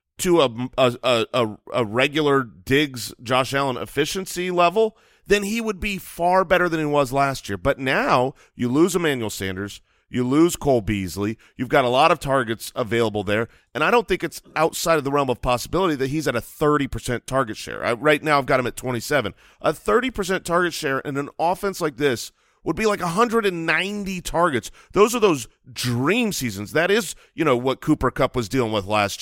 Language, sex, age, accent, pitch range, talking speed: English, male, 30-49, American, 120-165 Hz, 195 wpm